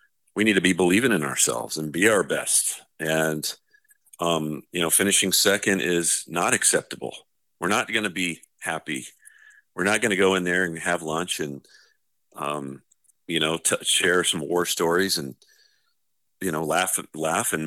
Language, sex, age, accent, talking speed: English, male, 50-69, American, 170 wpm